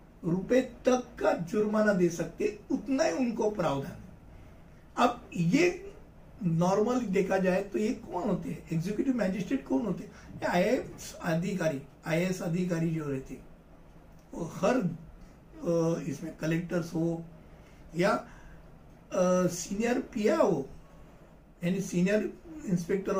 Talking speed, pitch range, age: 105 wpm, 175-225 Hz, 60-79